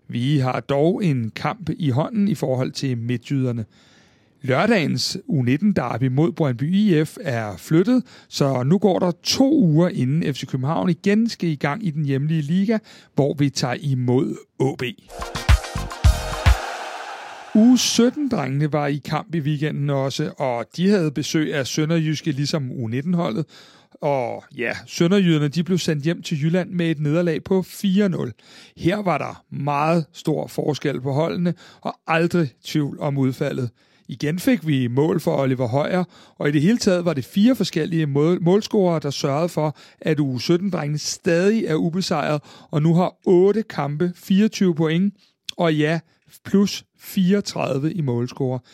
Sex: male